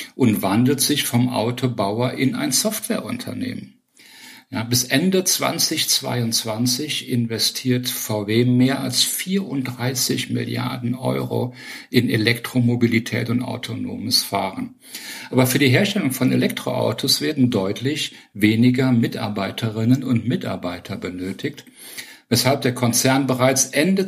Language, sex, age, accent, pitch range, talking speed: German, male, 50-69, German, 115-135 Hz, 100 wpm